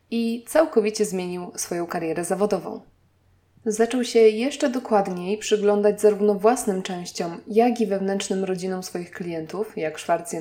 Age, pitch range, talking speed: 20-39, 195-225 Hz, 135 wpm